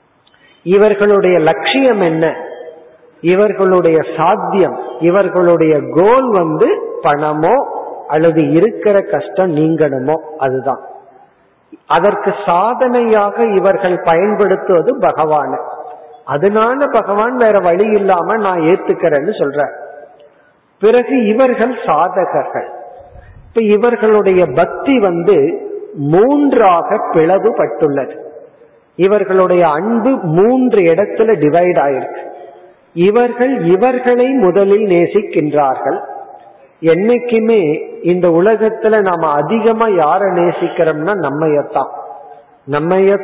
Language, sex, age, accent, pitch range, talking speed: Tamil, male, 50-69, native, 160-225 Hz, 75 wpm